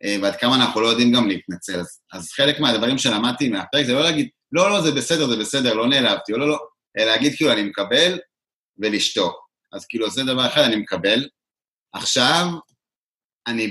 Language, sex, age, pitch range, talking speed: Hebrew, male, 30-49, 100-140 Hz, 190 wpm